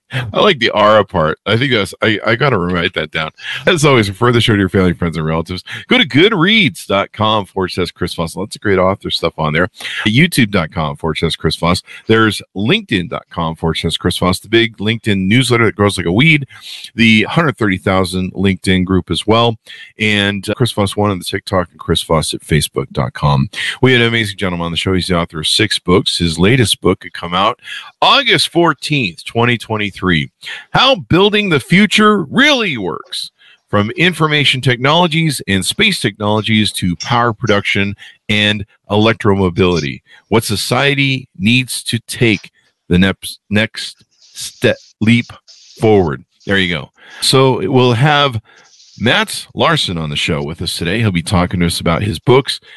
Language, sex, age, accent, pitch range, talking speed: English, male, 50-69, American, 90-120 Hz, 170 wpm